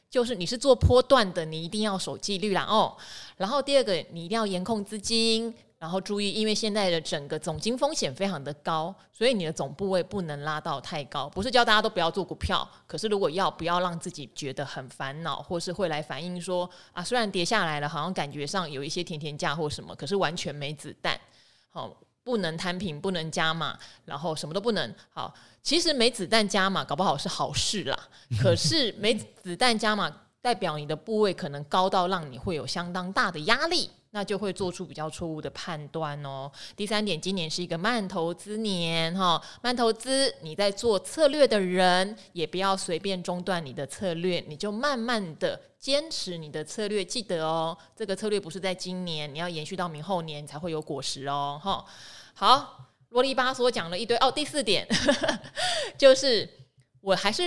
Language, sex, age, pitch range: Chinese, female, 20-39, 160-215 Hz